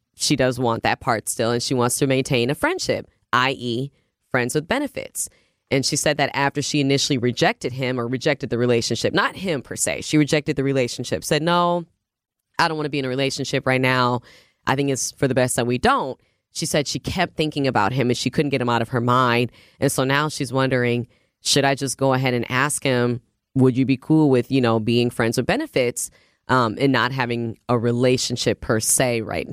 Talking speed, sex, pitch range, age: 220 wpm, female, 125-150 Hz, 10-29